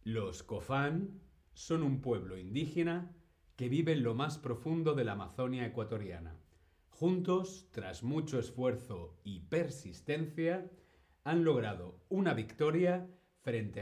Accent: Spanish